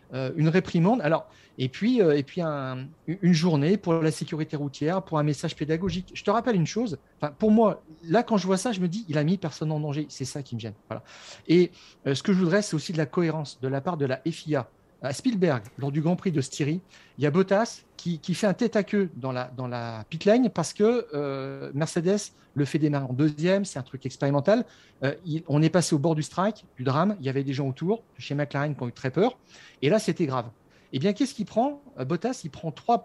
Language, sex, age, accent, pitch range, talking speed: French, male, 40-59, French, 145-195 Hz, 255 wpm